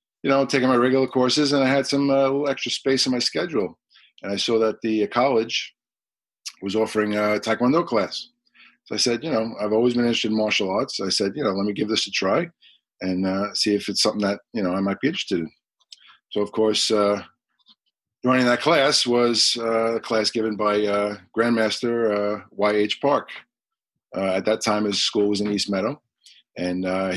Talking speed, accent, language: 210 wpm, American, English